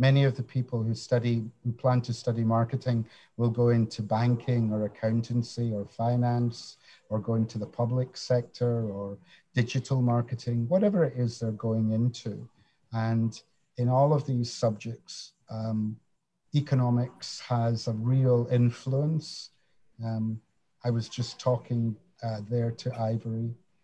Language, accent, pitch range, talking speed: English, British, 115-125 Hz, 140 wpm